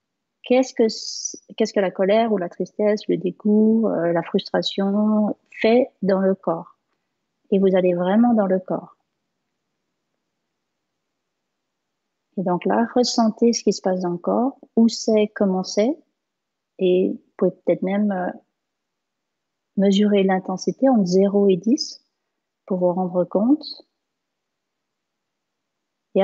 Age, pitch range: 40-59, 190-230 Hz